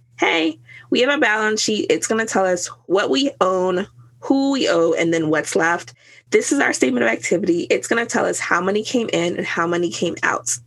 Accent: American